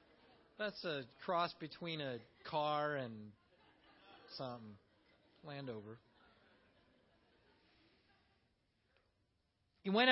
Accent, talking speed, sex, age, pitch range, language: American, 65 wpm, male, 40-59, 150-250 Hz, English